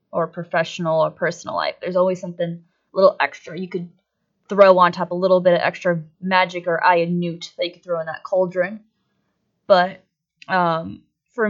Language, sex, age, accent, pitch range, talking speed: English, female, 20-39, American, 180-215 Hz, 185 wpm